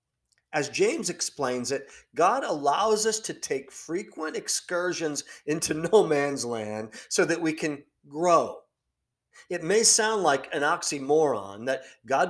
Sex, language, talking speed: male, English, 135 wpm